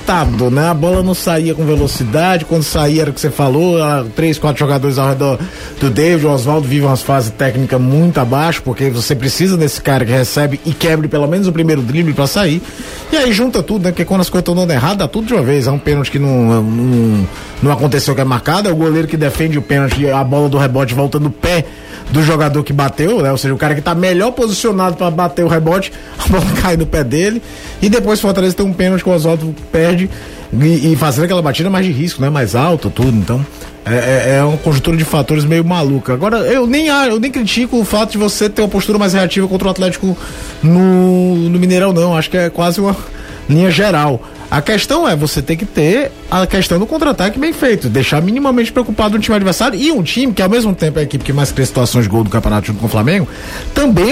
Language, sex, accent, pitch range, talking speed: Portuguese, male, Brazilian, 140-190 Hz, 235 wpm